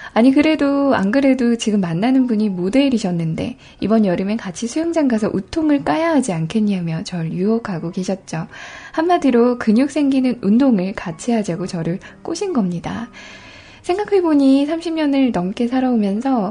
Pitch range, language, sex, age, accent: 185-255 Hz, Korean, female, 20-39, native